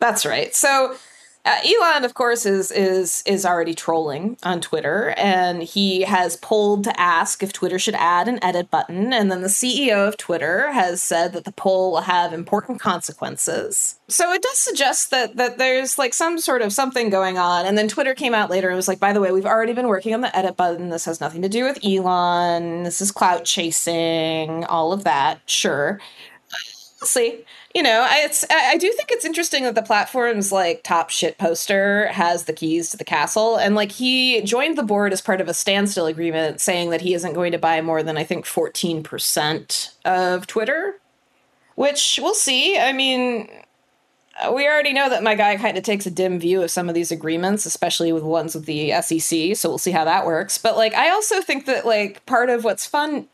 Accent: American